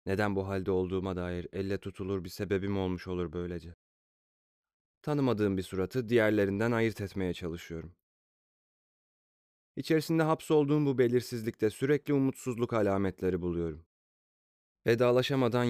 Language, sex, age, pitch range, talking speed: Turkish, male, 30-49, 85-115 Hz, 105 wpm